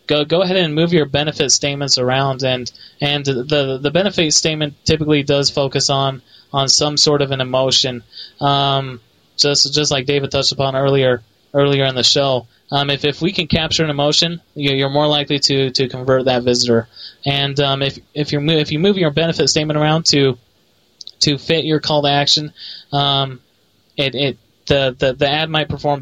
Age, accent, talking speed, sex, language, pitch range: 20-39, American, 185 wpm, male, English, 135-150 Hz